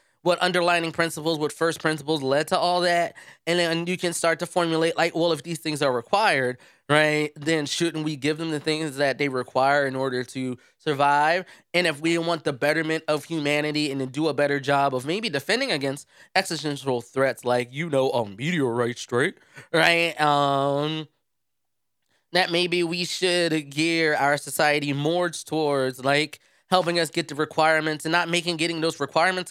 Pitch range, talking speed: 145-175 Hz, 180 wpm